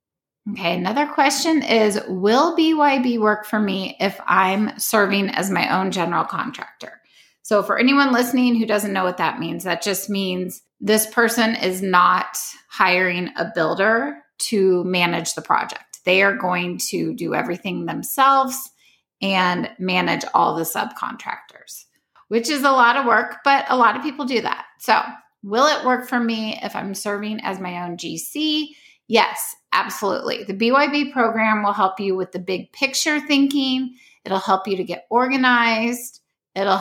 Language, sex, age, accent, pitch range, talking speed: English, female, 20-39, American, 190-255 Hz, 160 wpm